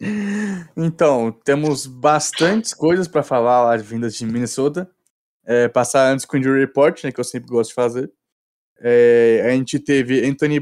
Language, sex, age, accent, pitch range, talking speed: Portuguese, male, 20-39, Brazilian, 120-150 Hz, 170 wpm